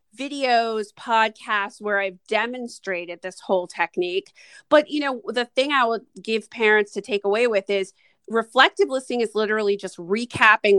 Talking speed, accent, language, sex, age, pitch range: 155 wpm, American, English, female, 30-49, 205-260 Hz